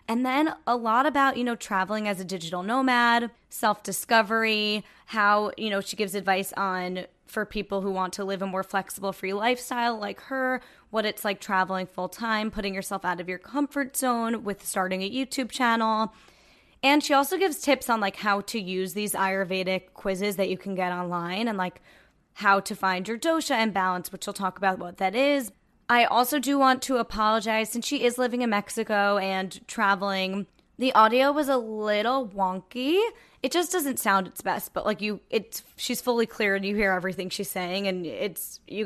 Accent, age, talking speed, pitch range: American, 20-39, 195 wpm, 195-250 Hz